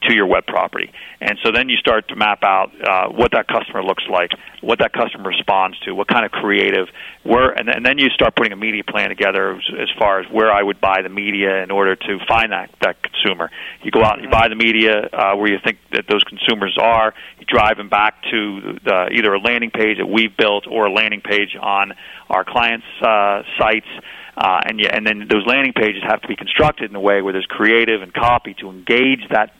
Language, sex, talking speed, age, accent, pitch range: English, male, 225 wpm, 40-59, American, 100-120 Hz